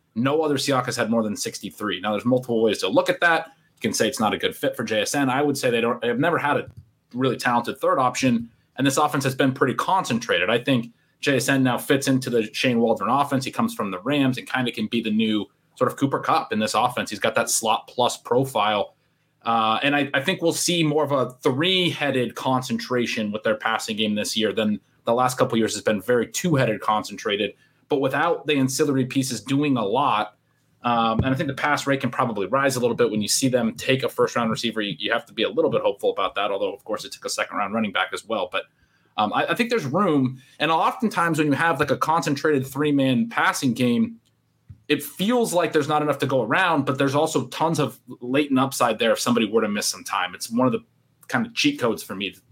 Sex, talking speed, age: male, 245 wpm, 30-49